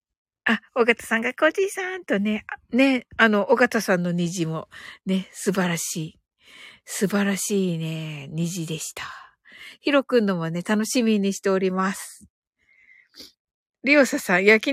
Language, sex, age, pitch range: Japanese, female, 50-69, 200-290 Hz